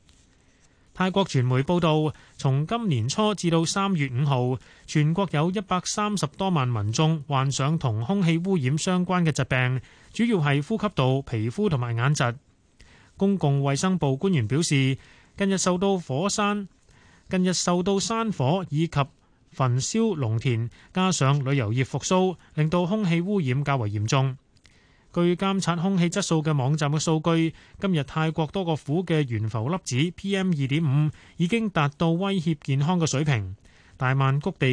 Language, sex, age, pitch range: Chinese, male, 20-39, 135-180 Hz